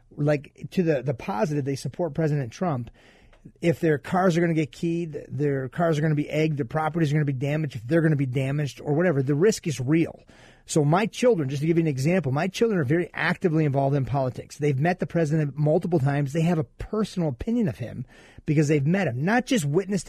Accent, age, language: American, 30-49, English